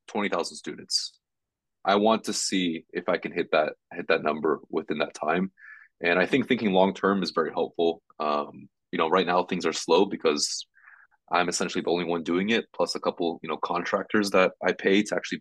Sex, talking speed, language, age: male, 205 wpm, English, 20-39